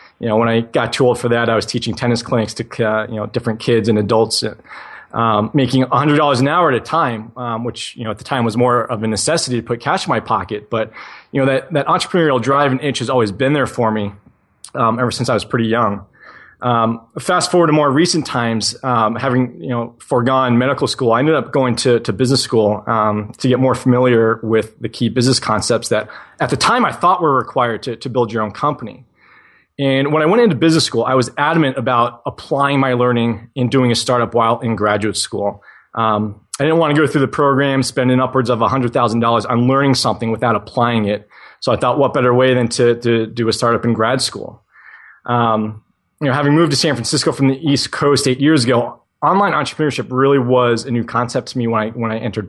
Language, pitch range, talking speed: English, 115-135 Hz, 230 wpm